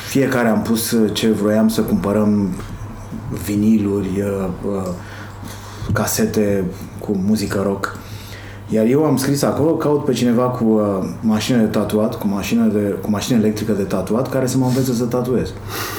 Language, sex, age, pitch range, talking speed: Romanian, male, 20-39, 105-120 Hz, 115 wpm